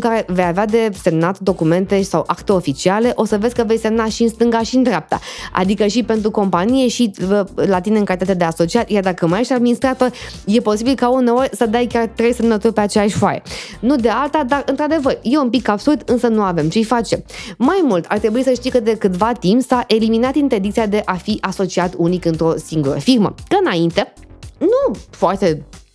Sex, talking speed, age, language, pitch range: female, 205 wpm, 20-39, Romanian, 185-245 Hz